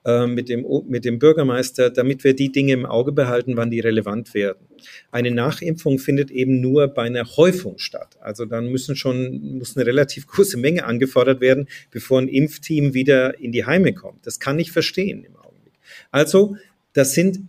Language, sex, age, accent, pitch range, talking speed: German, male, 40-59, German, 130-170 Hz, 180 wpm